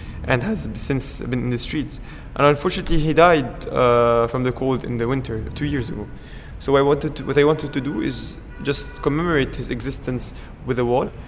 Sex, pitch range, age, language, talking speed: male, 125-150 Hz, 20-39, English, 185 wpm